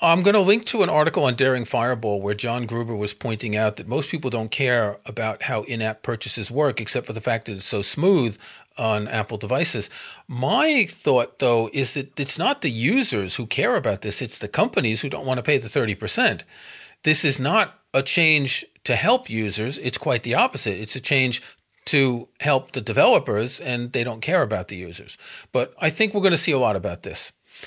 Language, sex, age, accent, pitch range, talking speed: English, male, 40-59, American, 115-155 Hz, 210 wpm